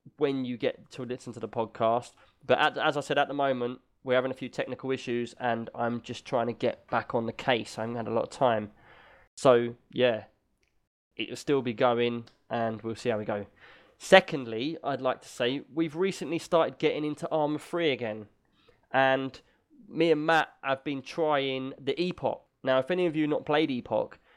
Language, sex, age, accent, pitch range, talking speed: English, male, 20-39, British, 120-150 Hz, 200 wpm